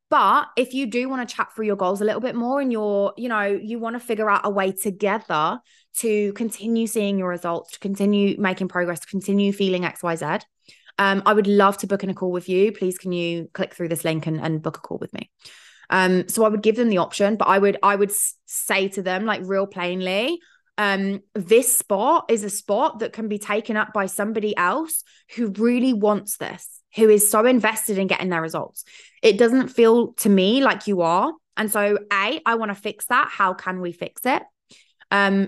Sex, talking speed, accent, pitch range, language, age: female, 225 wpm, British, 190-225 Hz, English, 20-39